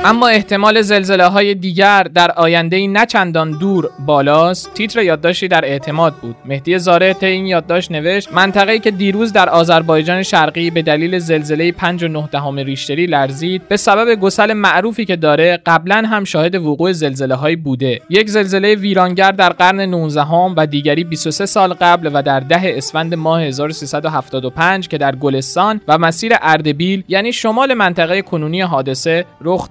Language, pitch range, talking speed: Persian, 150-190 Hz, 150 wpm